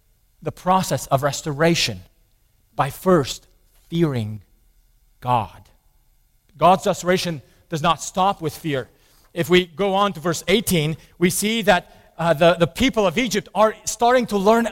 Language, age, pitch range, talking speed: English, 40-59, 155-225 Hz, 145 wpm